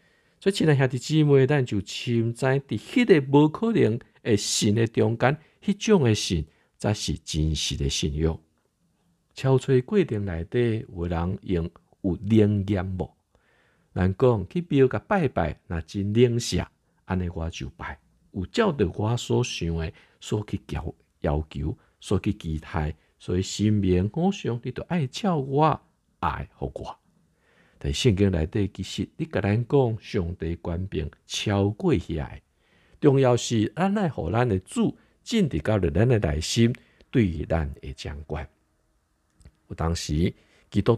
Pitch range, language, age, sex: 80-120 Hz, Chinese, 50-69, male